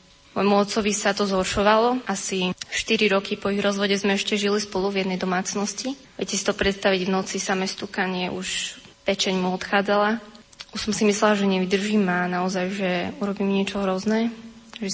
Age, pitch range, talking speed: 20-39, 190-205 Hz, 175 wpm